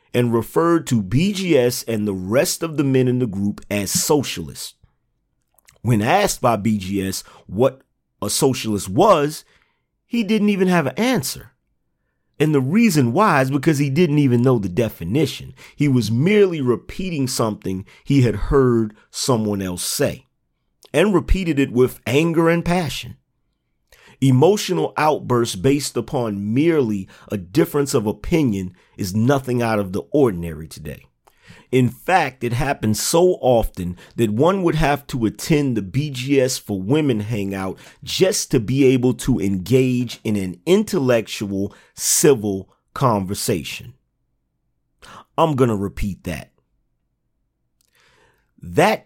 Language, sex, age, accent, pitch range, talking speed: English, male, 40-59, American, 105-145 Hz, 135 wpm